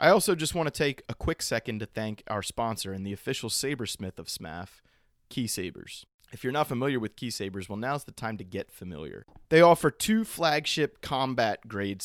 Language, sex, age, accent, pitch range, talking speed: English, male, 30-49, American, 100-135 Hz, 200 wpm